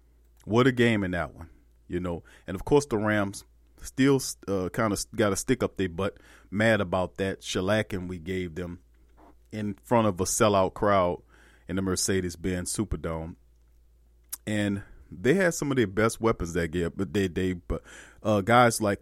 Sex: male